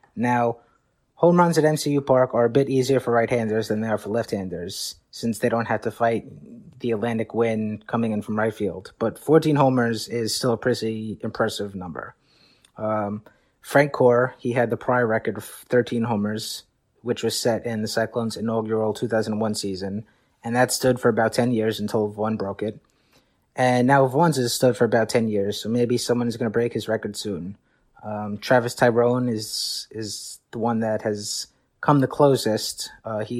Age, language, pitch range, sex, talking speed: 30-49, English, 110-125 Hz, male, 185 wpm